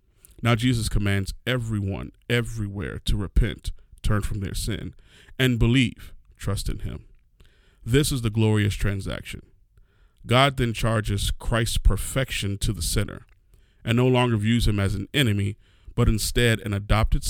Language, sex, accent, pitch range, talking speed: English, male, American, 95-115 Hz, 140 wpm